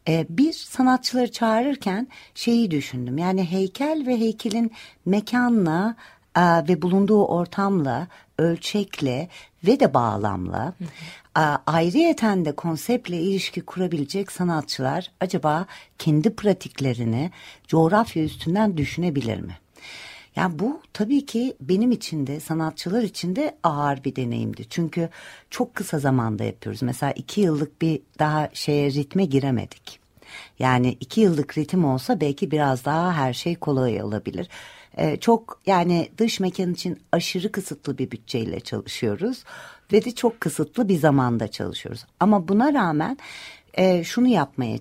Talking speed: 125 wpm